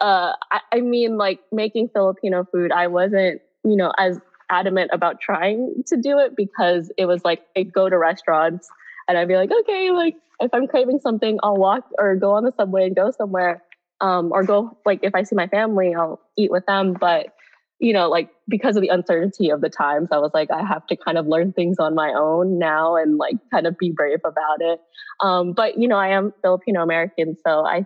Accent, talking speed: American, 220 wpm